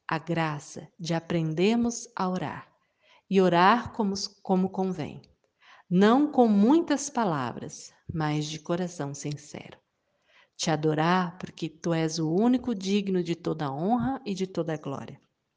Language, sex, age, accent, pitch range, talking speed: Portuguese, female, 50-69, Brazilian, 155-205 Hz, 130 wpm